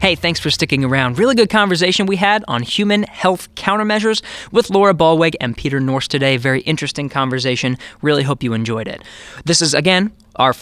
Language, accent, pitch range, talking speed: English, American, 140-180 Hz, 185 wpm